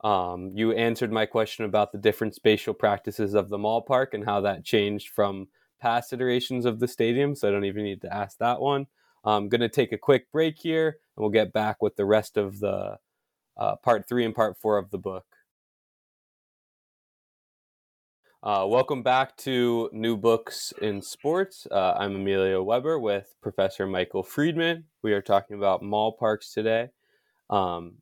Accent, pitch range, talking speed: American, 100-130 Hz, 180 wpm